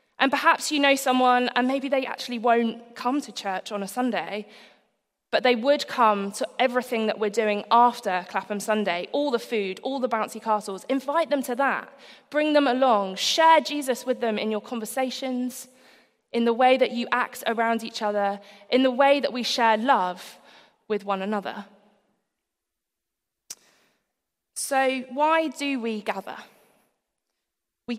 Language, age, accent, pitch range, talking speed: English, 20-39, British, 210-260 Hz, 160 wpm